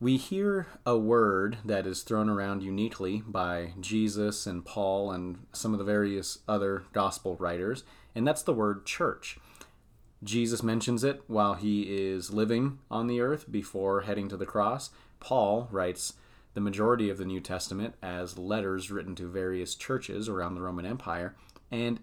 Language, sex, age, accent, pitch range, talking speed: English, male, 30-49, American, 95-120 Hz, 165 wpm